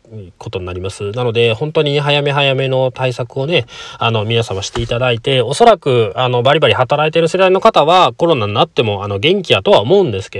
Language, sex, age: Japanese, male, 20-39